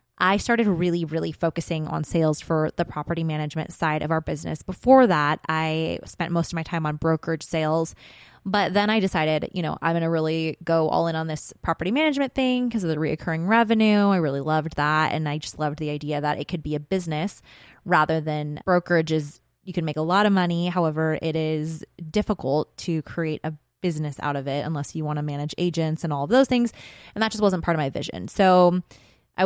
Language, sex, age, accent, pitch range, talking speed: English, female, 20-39, American, 155-195 Hz, 220 wpm